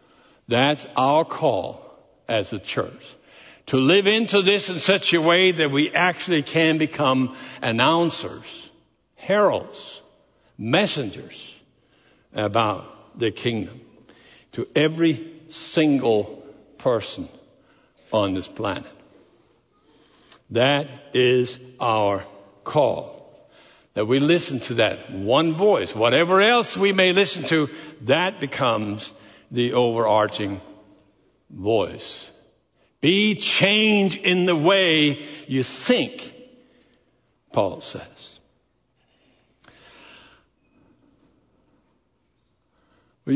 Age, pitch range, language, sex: 60-79, 130-195 Hz, English, male